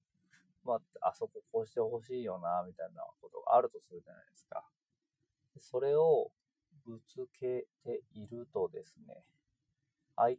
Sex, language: male, Japanese